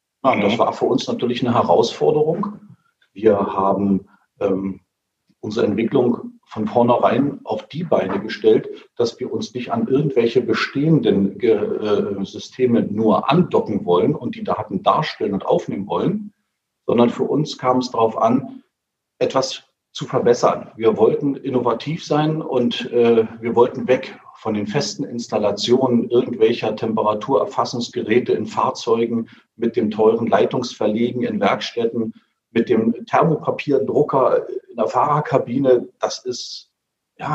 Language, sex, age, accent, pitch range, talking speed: German, male, 40-59, German, 115-155 Hz, 125 wpm